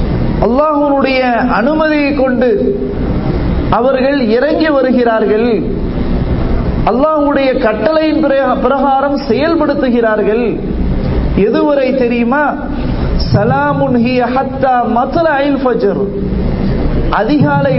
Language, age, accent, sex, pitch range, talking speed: English, 40-59, Indian, male, 240-290 Hz, 95 wpm